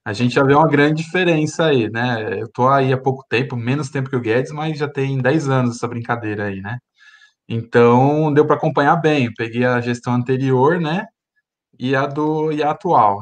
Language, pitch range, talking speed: Portuguese, 125-170 Hz, 210 wpm